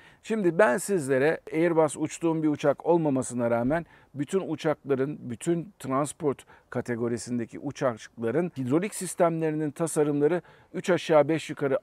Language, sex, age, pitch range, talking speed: Turkish, male, 50-69, 130-170 Hz, 110 wpm